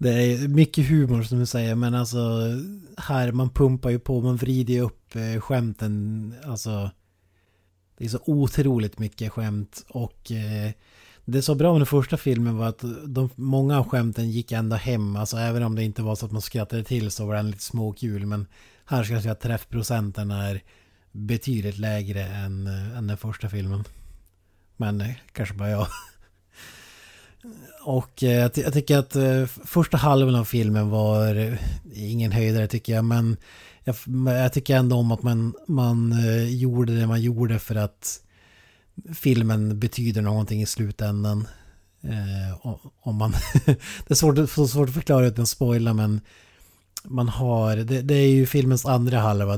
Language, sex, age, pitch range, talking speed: Swedish, male, 30-49, 105-125 Hz, 170 wpm